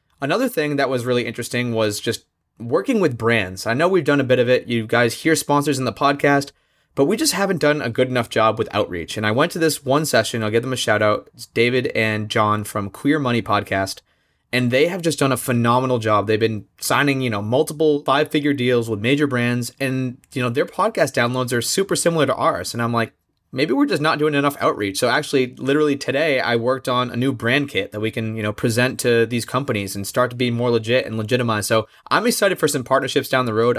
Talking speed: 240 wpm